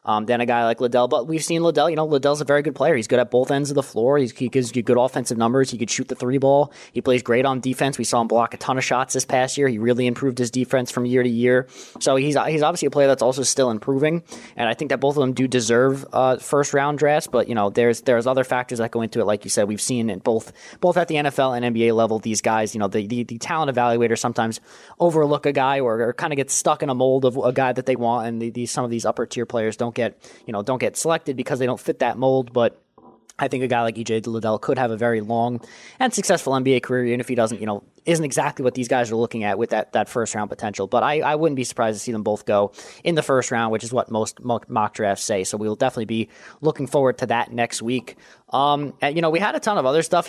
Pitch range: 115-140 Hz